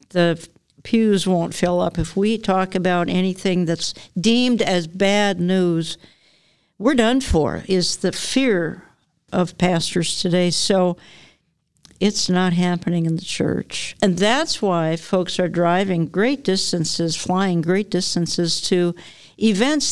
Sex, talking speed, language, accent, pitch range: female, 135 wpm, English, American, 175-195 Hz